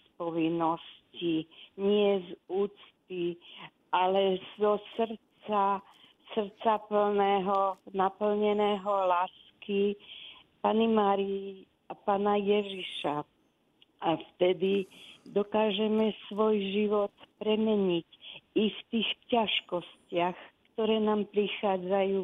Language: Slovak